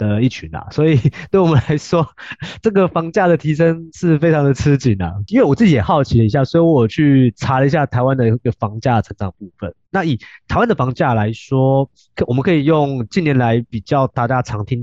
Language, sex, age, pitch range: Chinese, male, 20-39, 110-150 Hz